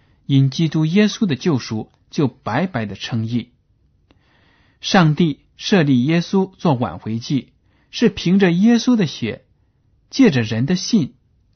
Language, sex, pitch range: Chinese, male, 110-170 Hz